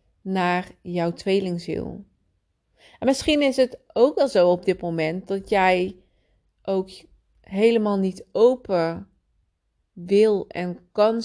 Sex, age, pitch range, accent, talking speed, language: female, 30-49, 180-215 Hz, Dutch, 115 wpm, Dutch